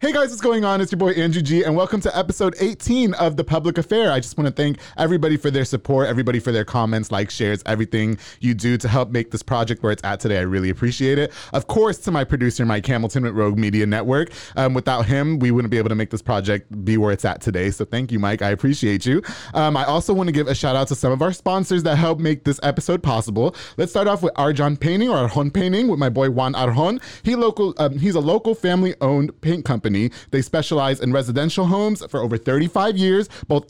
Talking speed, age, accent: 245 wpm, 20-39, American